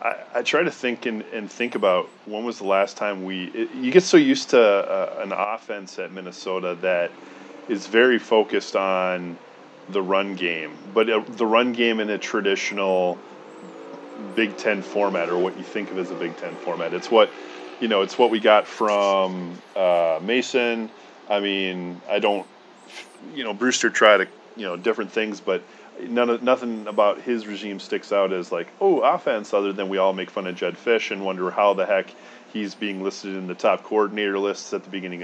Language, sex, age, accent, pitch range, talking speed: English, male, 30-49, American, 95-115 Hz, 200 wpm